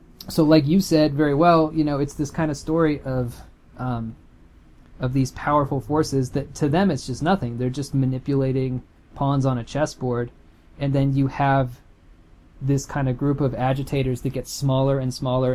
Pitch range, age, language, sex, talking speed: 115-140 Hz, 20-39, English, male, 180 wpm